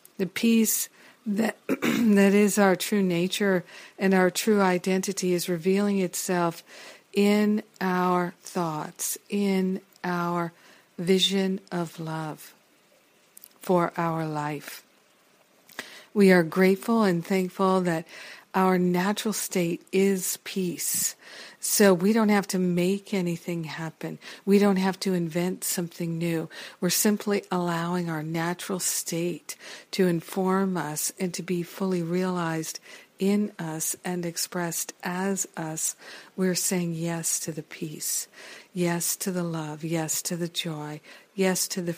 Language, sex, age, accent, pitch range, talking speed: English, female, 50-69, American, 170-190 Hz, 125 wpm